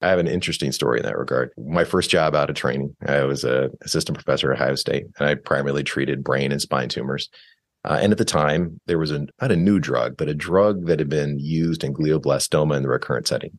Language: English